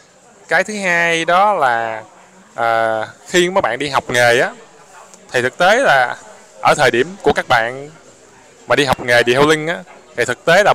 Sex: male